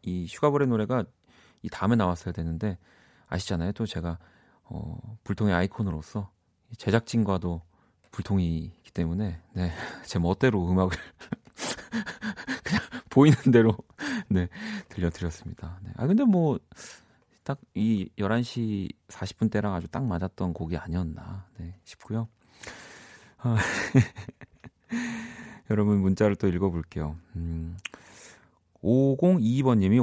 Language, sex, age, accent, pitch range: Korean, male, 40-59, native, 90-120 Hz